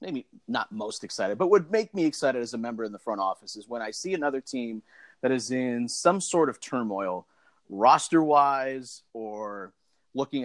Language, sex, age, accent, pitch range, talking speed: English, male, 30-49, American, 120-160 Hz, 195 wpm